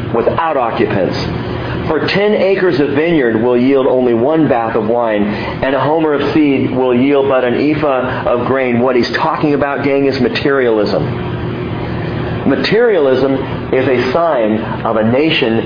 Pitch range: 125-170 Hz